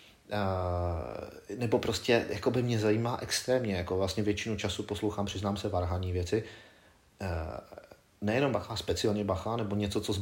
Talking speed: 140 wpm